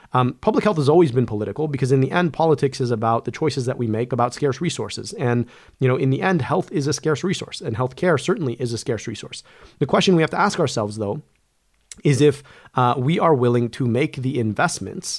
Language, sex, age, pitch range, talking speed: English, male, 30-49, 120-145 Hz, 230 wpm